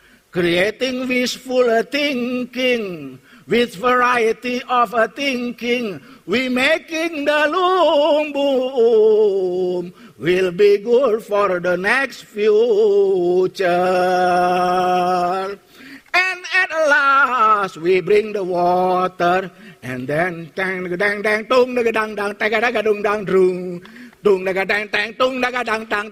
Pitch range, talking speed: 195-315 Hz, 90 wpm